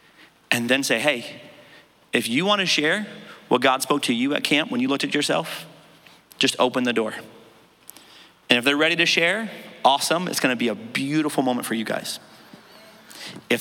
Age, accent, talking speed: 40-59, American, 180 wpm